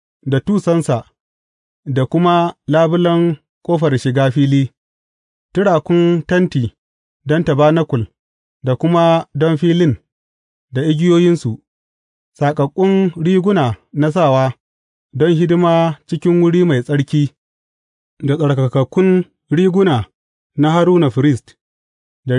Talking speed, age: 90 wpm, 30-49